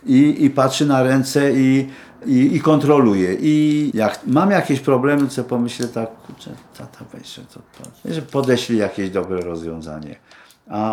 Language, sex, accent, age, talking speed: Polish, male, native, 50-69, 145 wpm